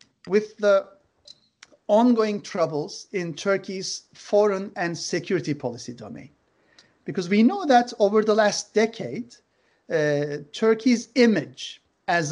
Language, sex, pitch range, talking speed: Turkish, male, 150-215 Hz, 110 wpm